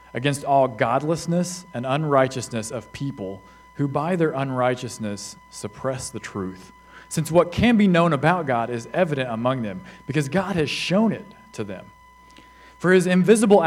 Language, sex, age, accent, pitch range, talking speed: English, male, 40-59, American, 120-195 Hz, 155 wpm